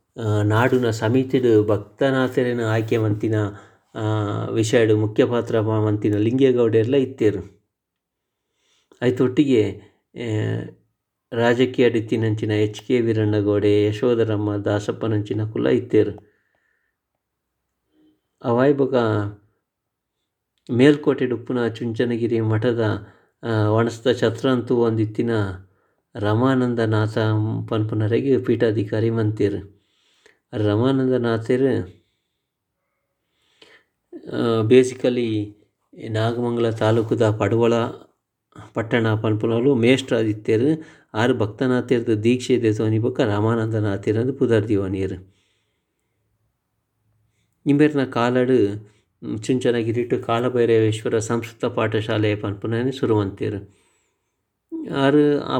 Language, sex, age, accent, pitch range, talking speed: English, male, 50-69, Indian, 105-125 Hz, 45 wpm